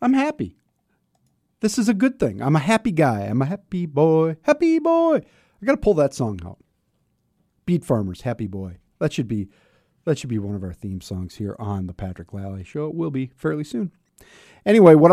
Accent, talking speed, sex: American, 200 wpm, male